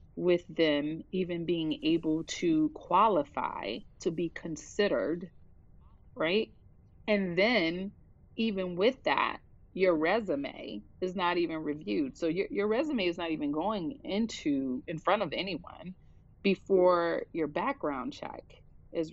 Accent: American